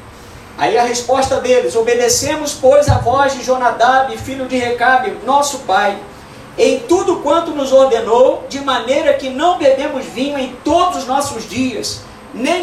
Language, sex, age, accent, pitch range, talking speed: Portuguese, male, 50-69, Brazilian, 240-325 Hz, 150 wpm